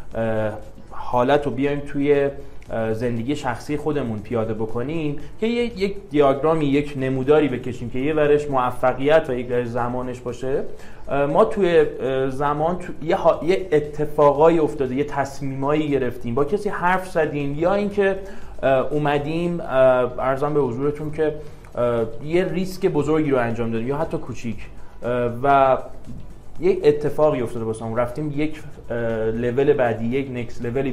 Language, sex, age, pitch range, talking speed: Persian, male, 30-49, 125-160 Hz, 130 wpm